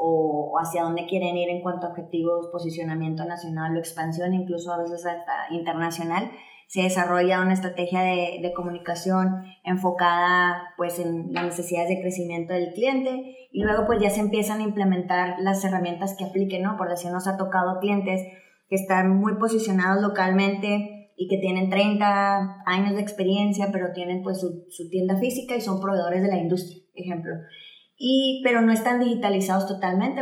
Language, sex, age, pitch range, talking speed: Spanish, male, 20-39, 180-205 Hz, 170 wpm